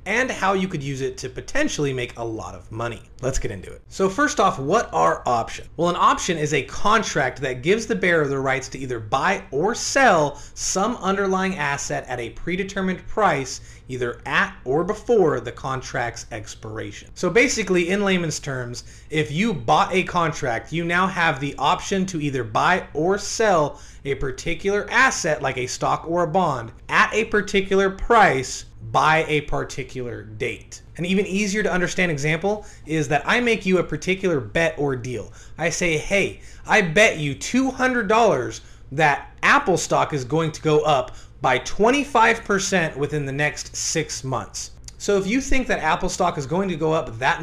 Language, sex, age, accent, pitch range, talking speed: English, male, 30-49, American, 130-195 Hz, 180 wpm